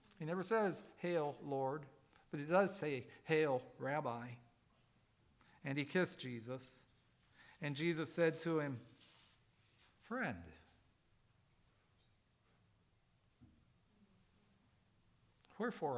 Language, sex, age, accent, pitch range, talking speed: English, male, 50-69, American, 120-165 Hz, 85 wpm